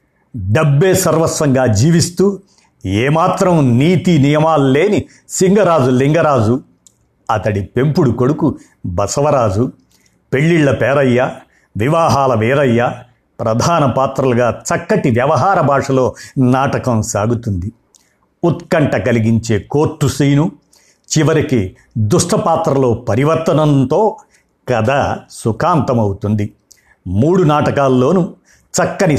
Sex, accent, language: male, native, Telugu